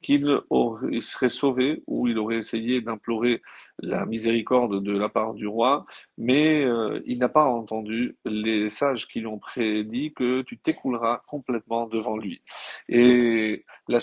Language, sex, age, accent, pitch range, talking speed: French, male, 40-59, French, 110-140 Hz, 160 wpm